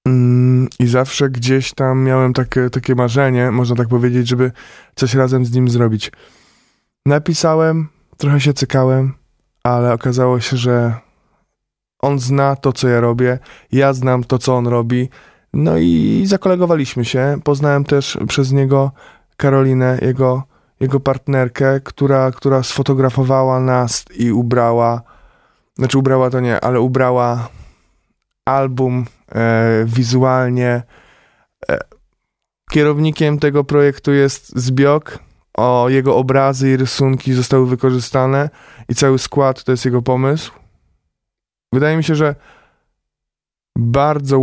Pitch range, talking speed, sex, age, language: 125-140 Hz, 115 wpm, male, 20-39, Polish